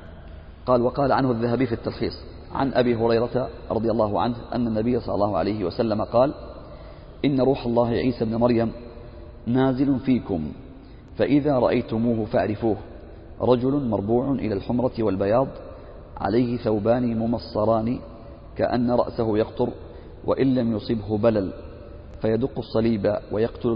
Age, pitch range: 40-59, 105-125 Hz